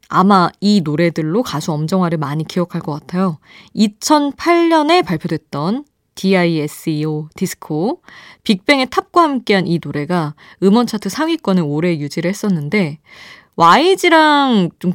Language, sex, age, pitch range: Korean, female, 20-39, 160-235 Hz